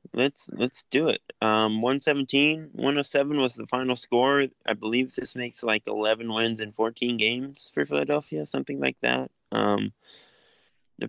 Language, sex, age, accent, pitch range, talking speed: English, male, 20-39, American, 110-135 Hz, 150 wpm